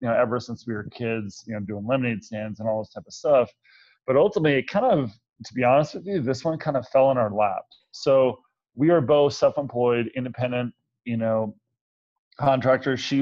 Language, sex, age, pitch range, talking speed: English, male, 30-49, 110-135 Hz, 210 wpm